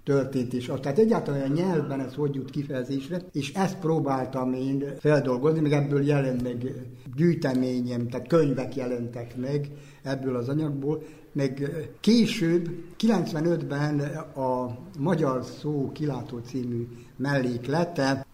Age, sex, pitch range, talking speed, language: 60-79, male, 130-160 Hz, 115 wpm, Hungarian